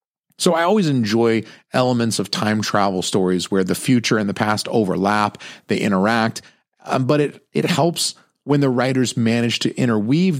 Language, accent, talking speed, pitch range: English, American, 165 wpm, 105-140 Hz